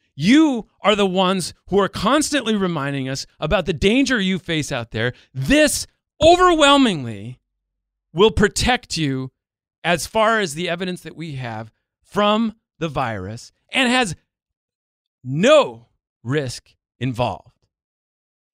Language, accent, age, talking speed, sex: English, American, 40-59, 120 wpm, male